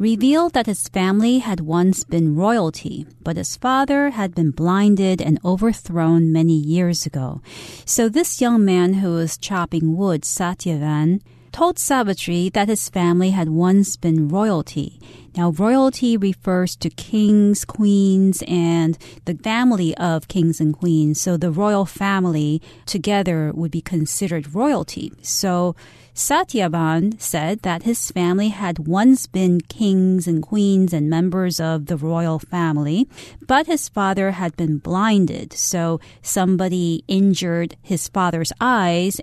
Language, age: Chinese, 40-59